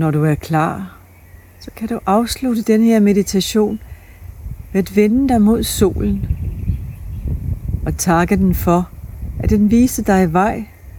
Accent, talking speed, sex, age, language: native, 140 wpm, female, 60-79, Danish